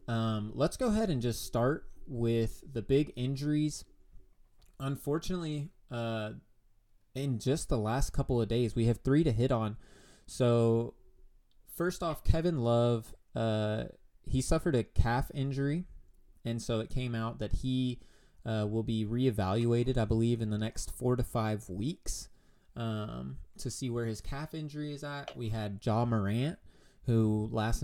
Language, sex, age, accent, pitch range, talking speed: English, male, 20-39, American, 110-135 Hz, 155 wpm